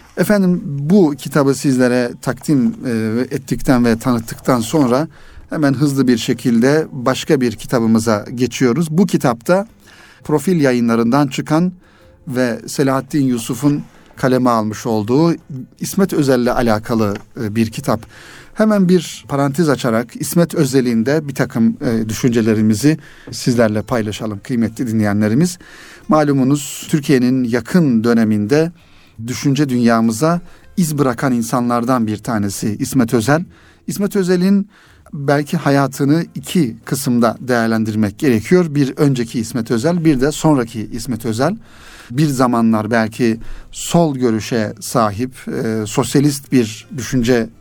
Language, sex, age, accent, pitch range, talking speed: Turkish, male, 40-59, native, 115-150 Hz, 110 wpm